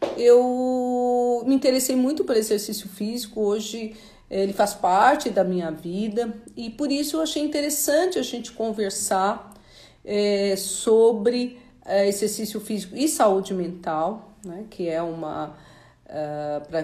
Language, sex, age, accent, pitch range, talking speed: Portuguese, female, 50-69, Brazilian, 190-250 Hz, 120 wpm